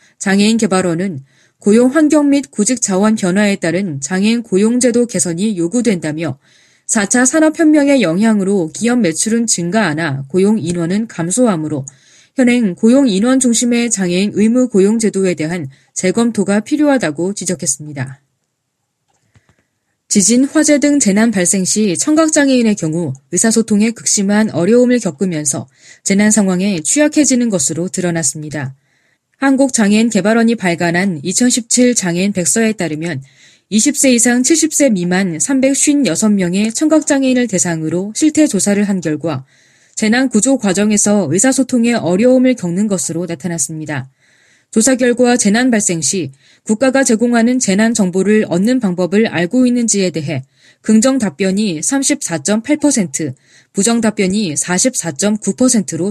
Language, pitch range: Korean, 170-240 Hz